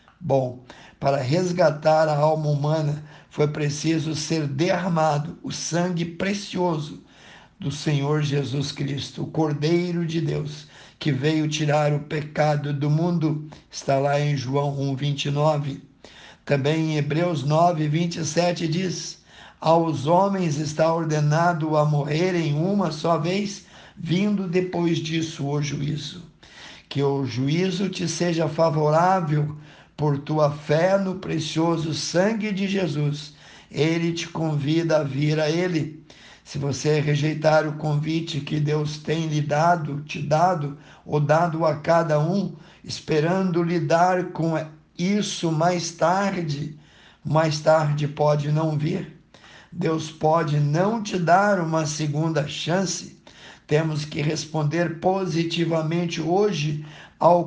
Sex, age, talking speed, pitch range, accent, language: male, 60-79, 120 wpm, 150-175 Hz, Brazilian, Portuguese